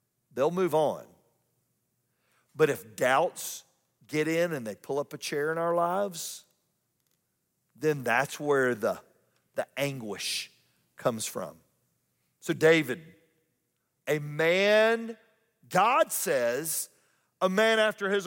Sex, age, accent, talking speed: male, 50-69, American, 115 wpm